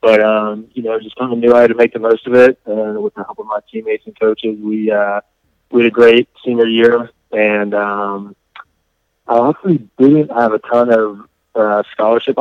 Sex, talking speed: male, 220 wpm